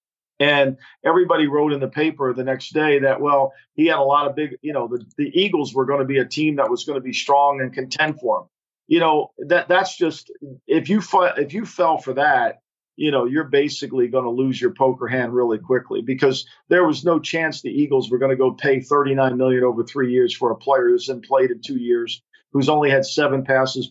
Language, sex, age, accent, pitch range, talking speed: English, male, 50-69, American, 135-165 Hz, 240 wpm